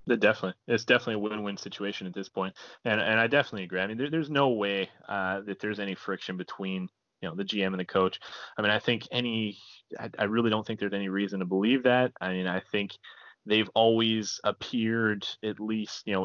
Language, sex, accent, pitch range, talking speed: English, male, American, 100-115 Hz, 220 wpm